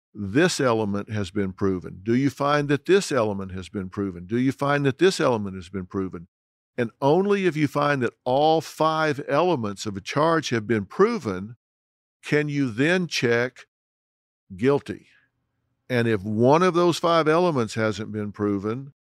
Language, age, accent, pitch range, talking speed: English, 50-69, American, 110-145 Hz, 165 wpm